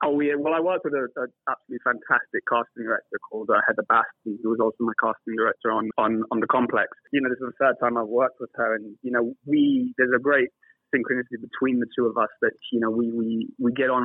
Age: 20-39